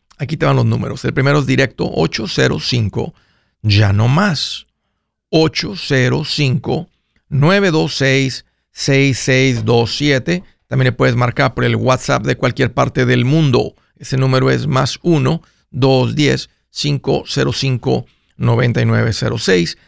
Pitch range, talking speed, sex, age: 120-160 Hz, 95 wpm, male, 50-69